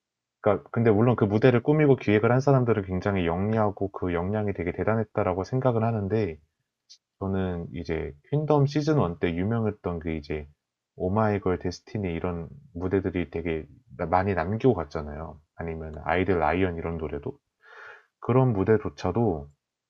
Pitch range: 85-110 Hz